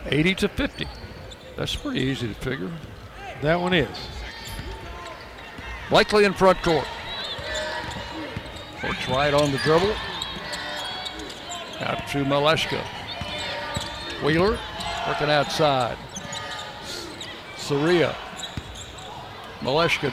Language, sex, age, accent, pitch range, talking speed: English, male, 60-79, American, 145-185 Hz, 85 wpm